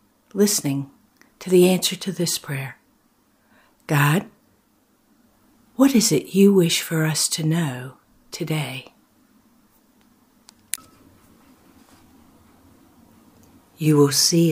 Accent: American